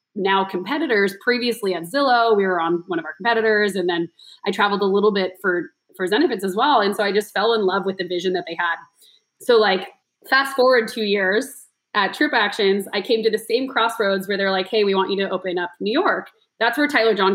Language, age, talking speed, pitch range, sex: English, 20-39, 230 wpm, 185-230 Hz, female